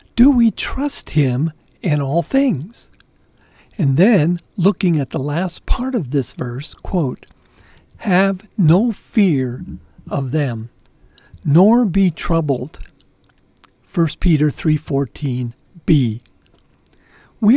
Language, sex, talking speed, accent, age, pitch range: English, male, 100 wpm, American, 50-69, 140-195 Hz